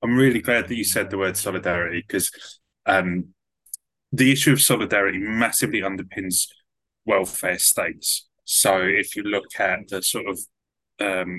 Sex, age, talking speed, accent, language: male, 20-39, 150 wpm, British, English